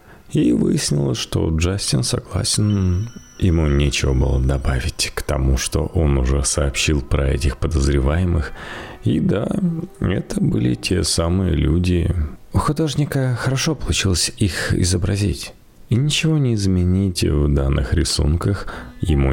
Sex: male